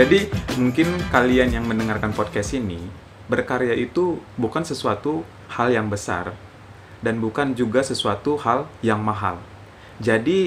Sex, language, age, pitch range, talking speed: male, Indonesian, 20-39, 100-120 Hz, 125 wpm